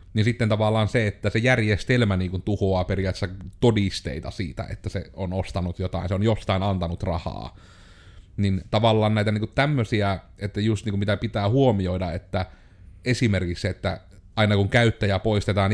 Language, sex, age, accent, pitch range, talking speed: Finnish, male, 30-49, native, 95-110 Hz, 165 wpm